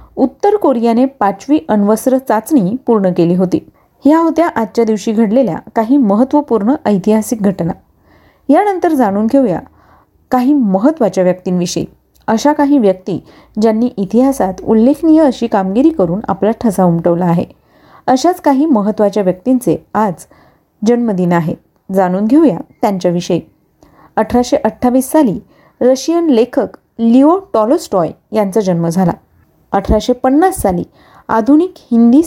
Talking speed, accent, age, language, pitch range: 110 wpm, native, 30-49, Marathi, 200-285 Hz